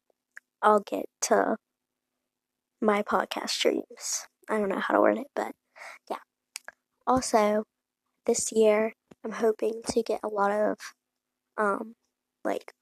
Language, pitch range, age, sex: English, 210-245 Hz, 20-39, female